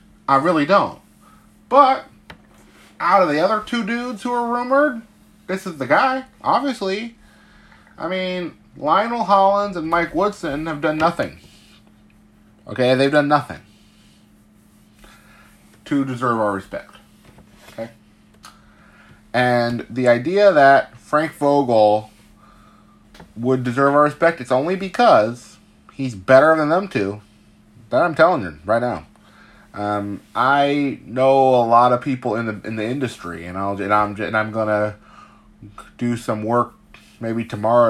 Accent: American